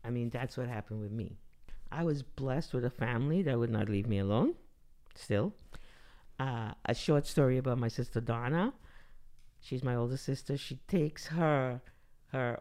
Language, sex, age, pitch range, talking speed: English, male, 50-69, 125-165 Hz, 170 wpm